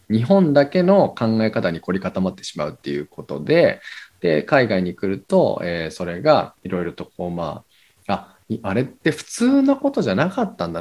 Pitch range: 90-145 Hz